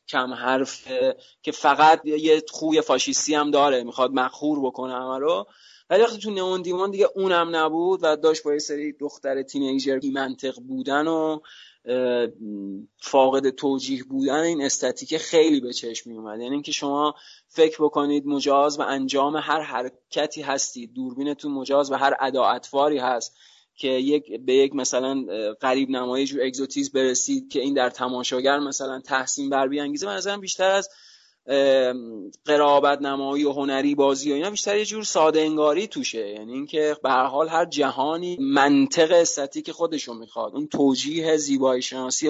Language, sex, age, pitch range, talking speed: Persian, male, 20-39, 135-155 Hz, 150 wpm